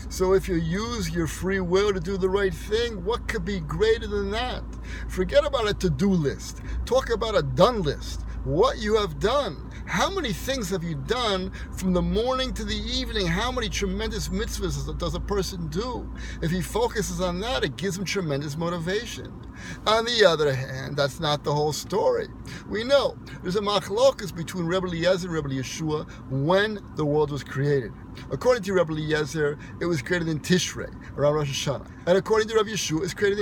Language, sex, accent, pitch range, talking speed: English, male, American, 150-200 Hz, 190 wpm